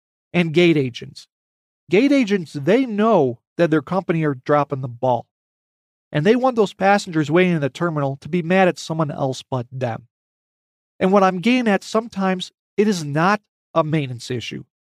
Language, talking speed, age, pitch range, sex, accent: English, 175 wpm, 40-59, 140-190 Hz, male, American